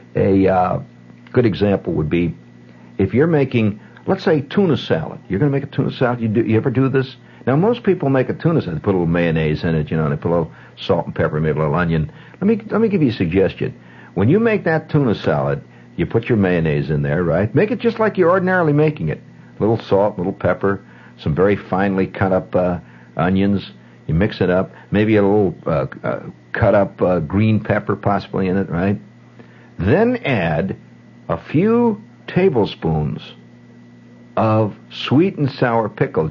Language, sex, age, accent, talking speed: English, male, 60-79, American, 205 wpm